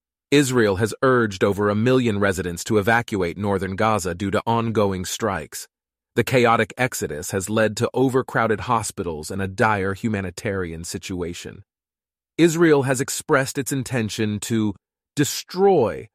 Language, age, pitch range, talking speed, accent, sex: English, 30-49, 95-120 Hz, 130 wpm, American, male